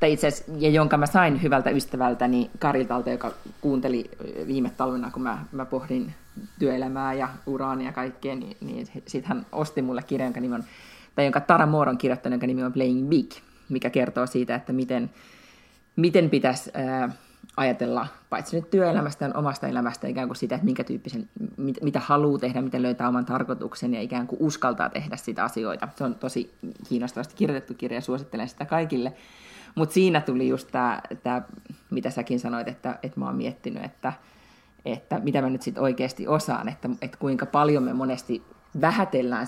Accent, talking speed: native, 170 wpm